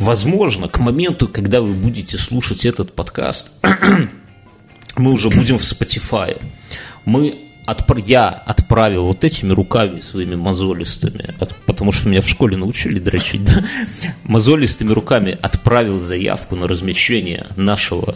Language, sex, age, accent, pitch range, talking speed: Russian, male, 30-49, native, 95-120 Hz, 125 wpm